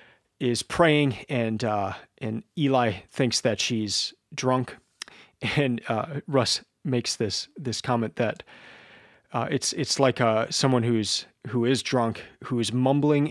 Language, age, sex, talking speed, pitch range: English, 30-49, male, 140 wpm, 115-140 Hz